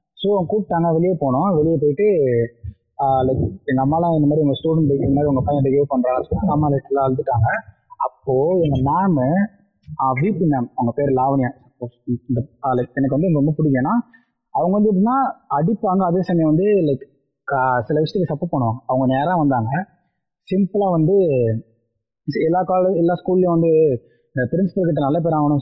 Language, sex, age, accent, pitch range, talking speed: Tamil, male, 20-39, native, 130-170 Hz, 150 wpm